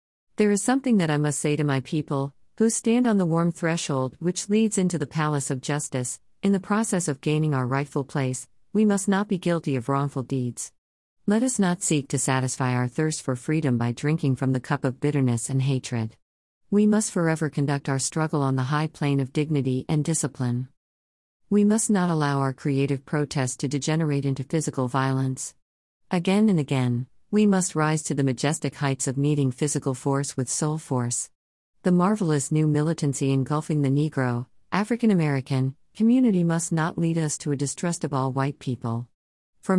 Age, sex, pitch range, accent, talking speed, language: 50-69, female, 130-165 Hz, American, 185 wpm, English